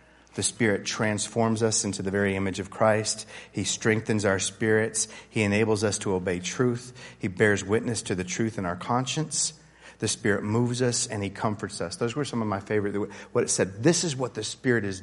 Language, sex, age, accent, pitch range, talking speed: English, male, 40-59, American, 100-125 Hz, 210 wpm